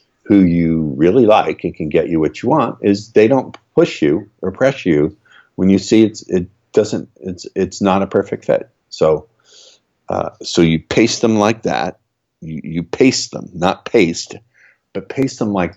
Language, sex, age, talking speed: English, male, 50-69, 185 wpm